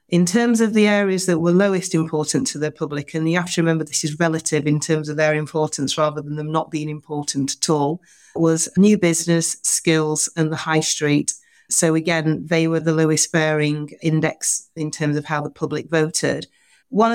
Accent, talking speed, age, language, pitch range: British, 200 wpm, 40-59, English, 155-170 Hz